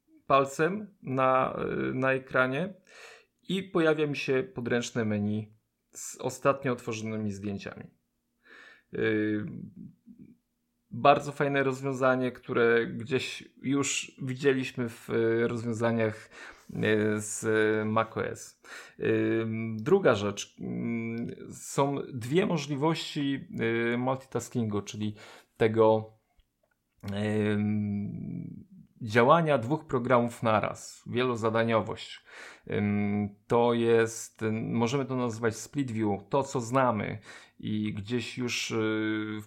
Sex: male